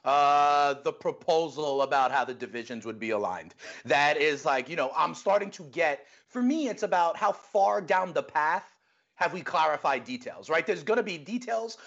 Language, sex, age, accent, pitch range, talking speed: English, male, 30-49, American, 150-230 Hz, 185 wpm